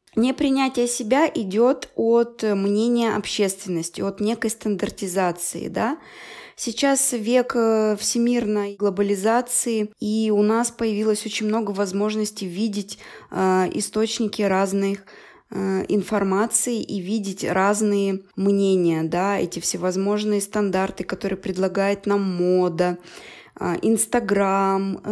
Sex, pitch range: female, 195-225 Hz